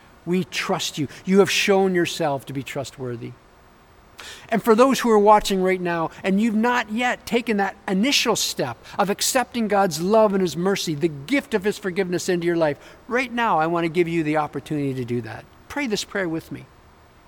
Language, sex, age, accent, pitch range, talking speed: English, male, 50-69, American, 140-195 Hz, 200 wpm